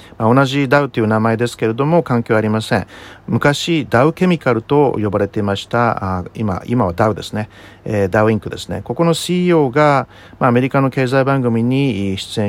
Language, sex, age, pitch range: Japanese, male, 50-69, 105-140 Hz